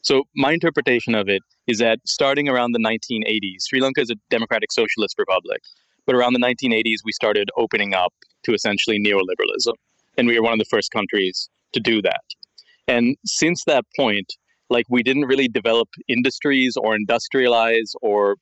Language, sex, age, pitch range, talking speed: English, male, 30-49, 110-135 Hz, 175 wpm